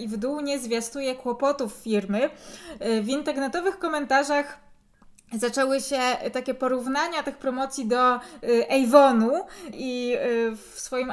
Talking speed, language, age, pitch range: 115 wpm, Polish, 20-39, 230-280 Hz